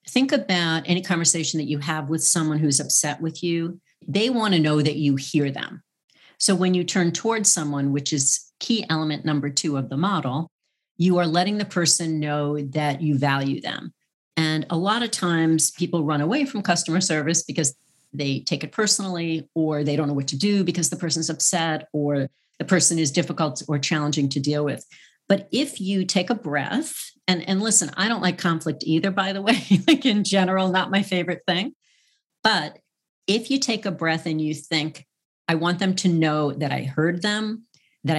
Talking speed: 200 wpm